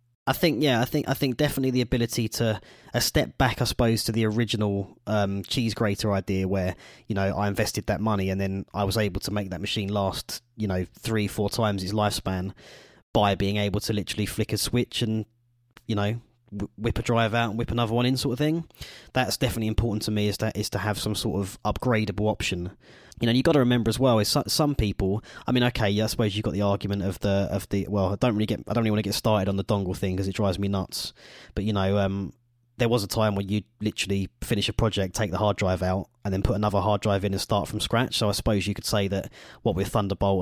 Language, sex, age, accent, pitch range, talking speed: English, male, 20-39, British, 100-115 Hz, 250 wpm